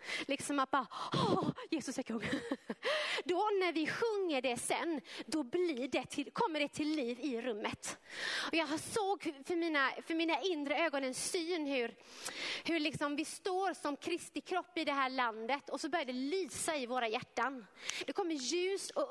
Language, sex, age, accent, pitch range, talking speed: Swedish, female, 30-49, native, 250-325 Hz, 180 wpm